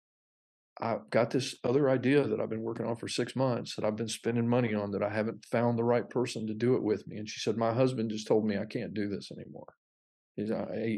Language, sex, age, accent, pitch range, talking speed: English, male, 50-69, American, 105-125 Hz, 245 wpm